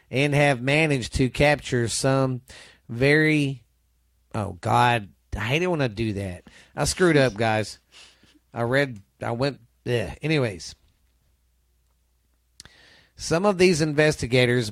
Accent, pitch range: American, 115-145 Hz